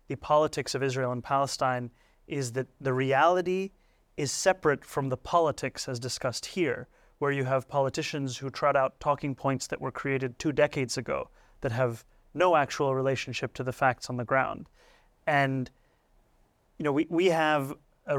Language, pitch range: English, 130-150 Hz